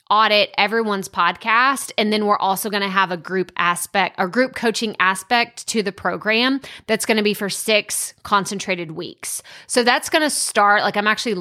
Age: 20-39